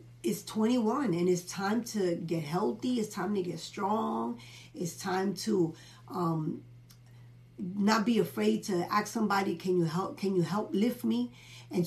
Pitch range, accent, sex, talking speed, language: 160-210 Hz, American, female, 160 wpm, English